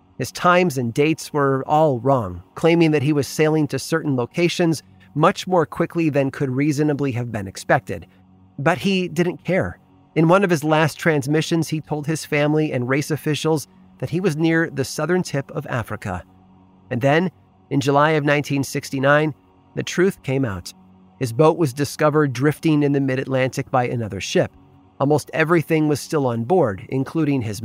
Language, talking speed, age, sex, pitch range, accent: English, 170 wpm, 30-49, male, 120-155 Hz, American